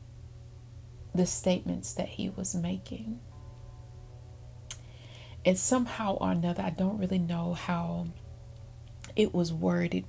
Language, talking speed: English, 105 wpm